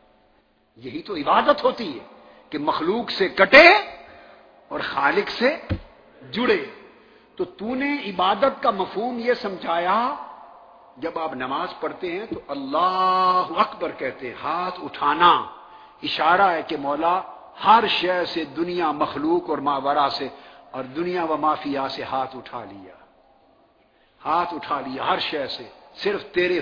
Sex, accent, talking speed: male, Indian, 140 wpm